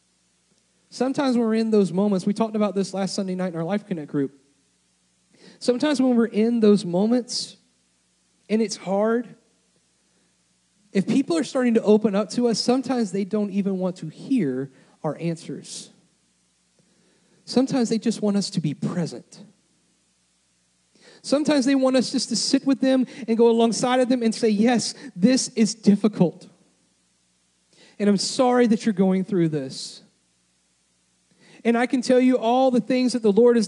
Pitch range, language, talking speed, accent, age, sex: 165-225 Hz, English, 165 wpm, American, 30-49, male